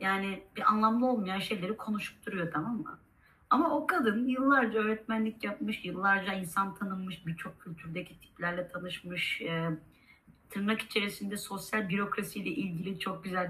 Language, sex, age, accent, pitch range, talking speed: Turkish, female, 30-49, native, 185-250 Hz, 135 wpm